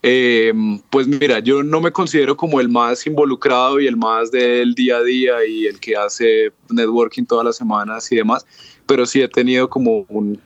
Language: English